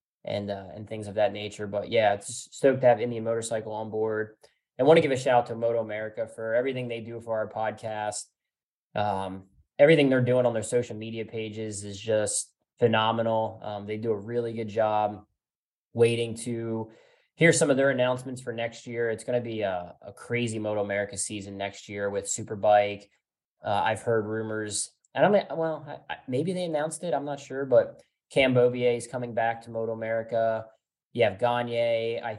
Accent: American